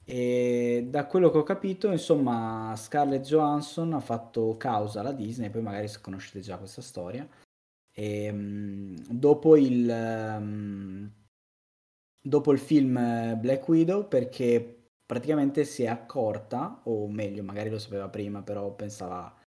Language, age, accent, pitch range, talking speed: Italian, 20-39, native, 105-130 Hz, 125 wpm